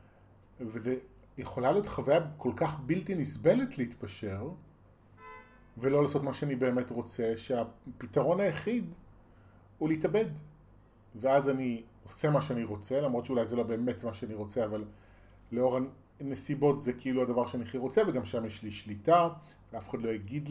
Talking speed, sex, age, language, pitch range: 145 wpm, male, 30-49, Hebrew, 105-135 Hz